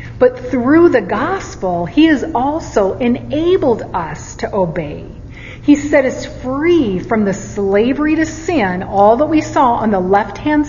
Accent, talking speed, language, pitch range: American, 150 wpm, English, 200-280 Hz